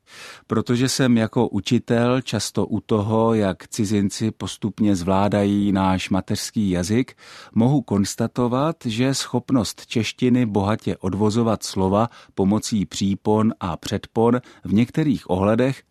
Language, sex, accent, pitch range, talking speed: Czech, male, native, 95-125 Hz, 110 wpm